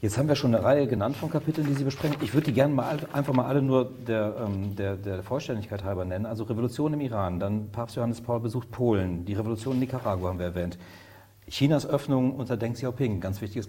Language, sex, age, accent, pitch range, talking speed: German, male, 40-59, German, 105-135 Hz, 225 wpm